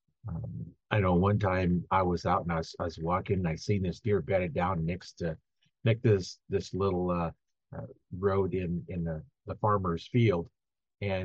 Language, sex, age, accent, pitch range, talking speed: English, male, 50-69, American, 90-110 Hz, 205 wpm